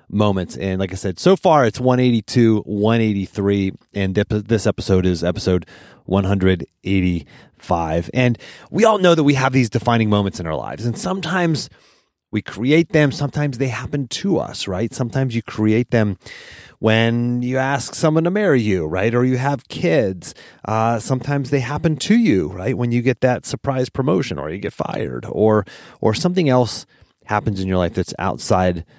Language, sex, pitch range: English, male, 100-140 Hz